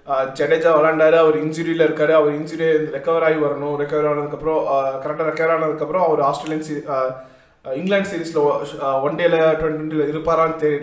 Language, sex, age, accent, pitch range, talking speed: Tamil, male, 20-39, native, 150-195 Hz, 125 wpm